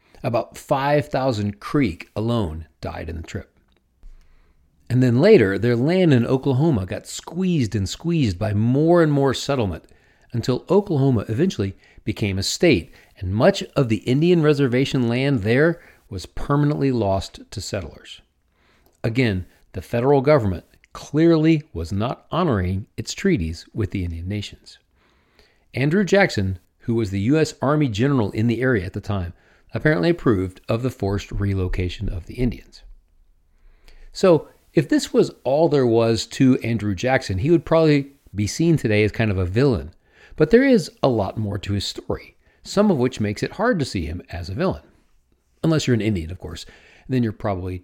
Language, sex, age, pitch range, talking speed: English, male, 40-59, 90-140 Hz, 165 wpm